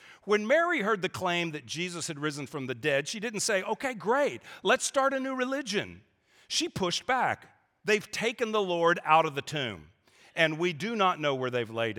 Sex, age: male, 50-69